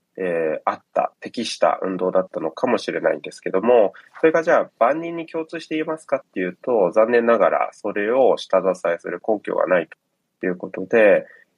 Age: 20-39